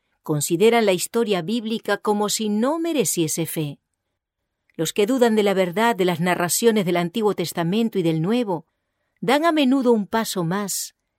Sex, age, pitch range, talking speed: female, 40-59, 170-235 Hz, 160 wpm